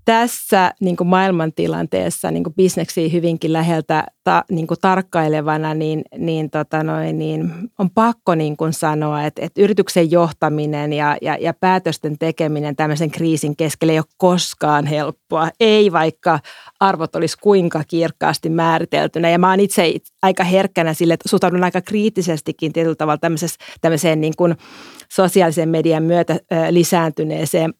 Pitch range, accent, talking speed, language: 155-185 Hz, native, 130 wpm, Finnish